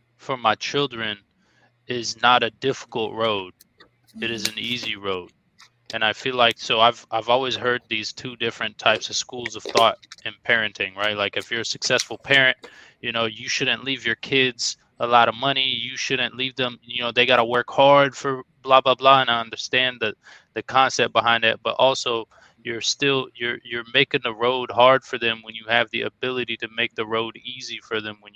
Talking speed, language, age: 205 wpm, English, 20-39